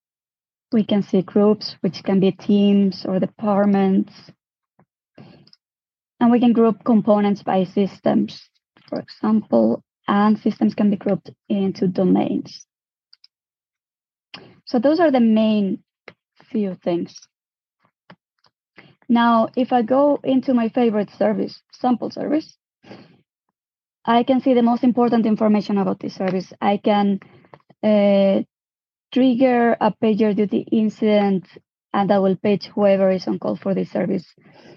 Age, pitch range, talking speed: 20-39, 195-225 Hz, 125 wpm